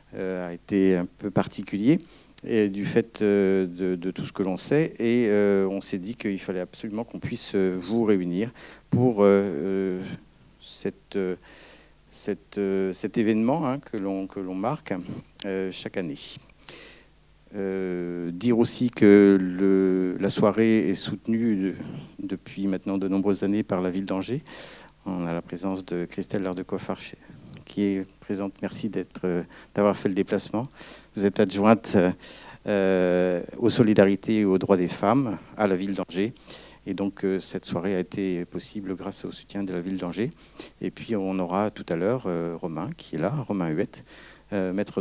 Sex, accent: male, French